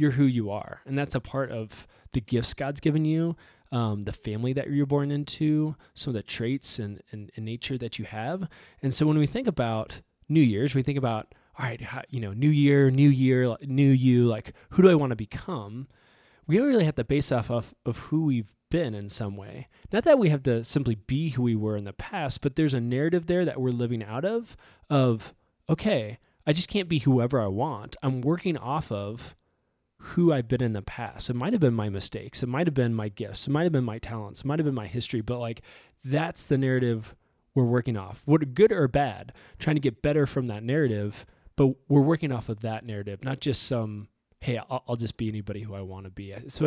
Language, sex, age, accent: English, male, 20-39, American